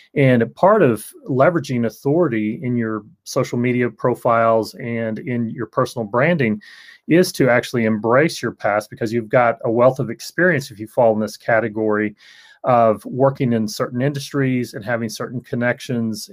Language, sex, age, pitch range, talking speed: English, male, 30-49, 110-135 Hz, 160 wpm